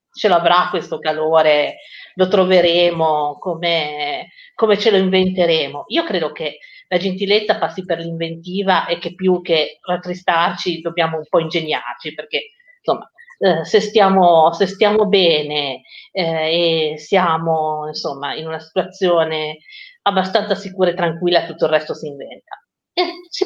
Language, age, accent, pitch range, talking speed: Italian, 50-69, native, 155-215 Hz, 135 wpm